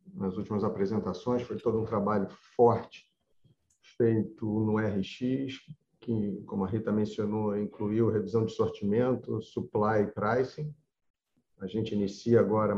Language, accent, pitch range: Portuguese, Brazilian, 100-115 Hz